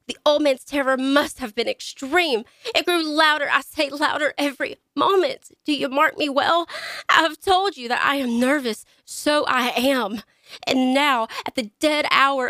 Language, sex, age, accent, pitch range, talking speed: English, female, 30-49, American, 235-295 Hz, 180 wpm